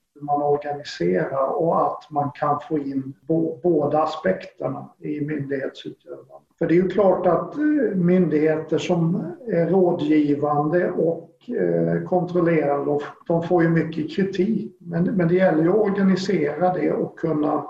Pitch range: 150-175 Hz